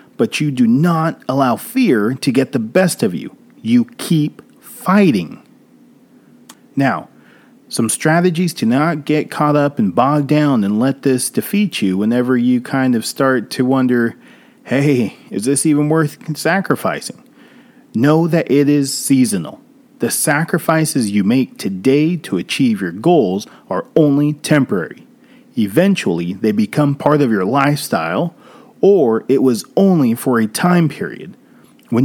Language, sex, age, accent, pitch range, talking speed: English, male, 40-59, American, 140-230 Hz, 145 wpm